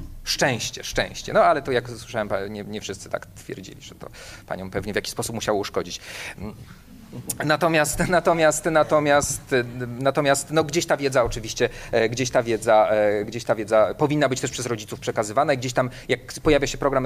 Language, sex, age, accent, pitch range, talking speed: Polish, male, 40-59, native, 125-155 Hz, 170 wpm